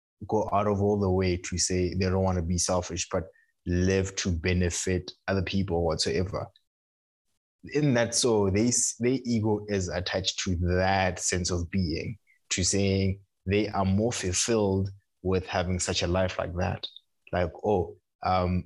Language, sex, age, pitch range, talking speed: English, male, 20-39, 90-105 Hz, 160 wpm